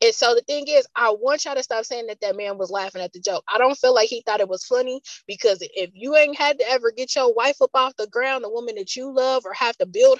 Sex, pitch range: female, 210-285 Hz